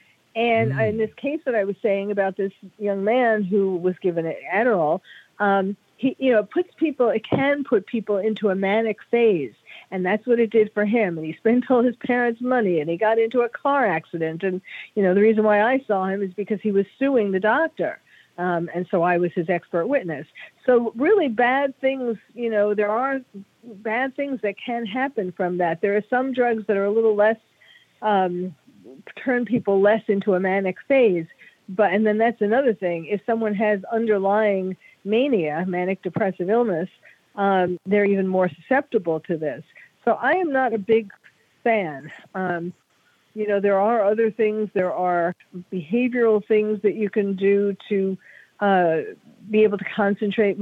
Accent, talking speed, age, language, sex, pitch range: American, 185 wpm, 50-69, English, female, 190-235 Hz